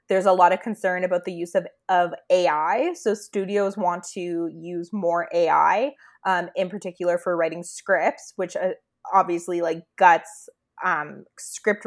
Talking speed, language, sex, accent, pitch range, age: 155 wpm, English, female, American, 175-240 Hz, 20-39